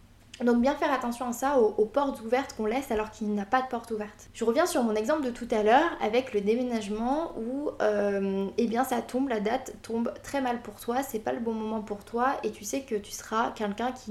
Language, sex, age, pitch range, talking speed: French, female, 20-39, 215-260 Hz, 250 wpm